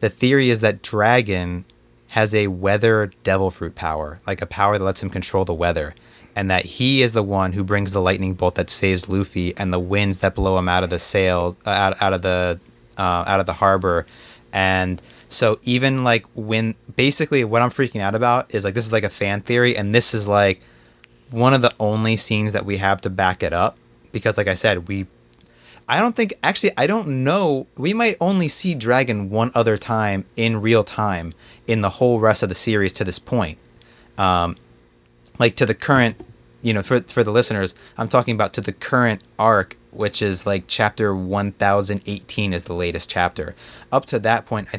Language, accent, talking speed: English, American, 205 wpm